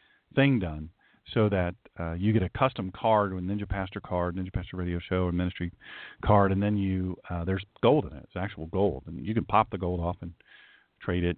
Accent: American